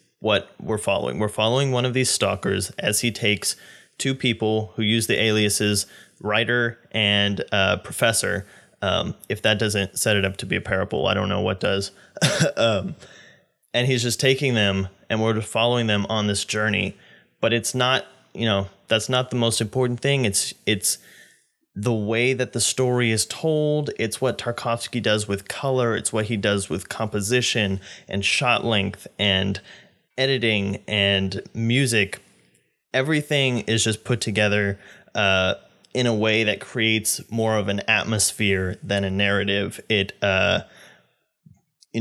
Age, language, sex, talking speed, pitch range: 20-39, English, male, 160 wpm, 100-120 Hz